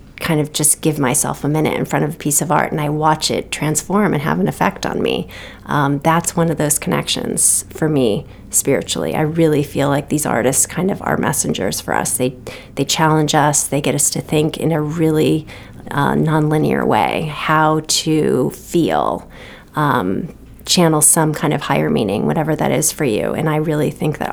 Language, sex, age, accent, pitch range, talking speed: English, female, 30-49, American, 150-160 Hz, 200 wpm